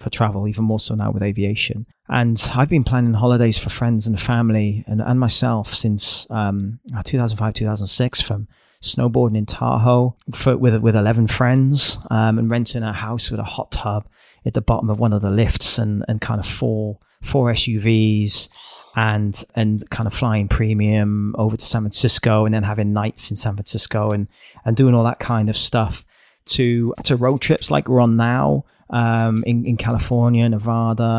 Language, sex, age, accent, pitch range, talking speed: English, male, 30-49, British, 110-120 Hz, 185 wpm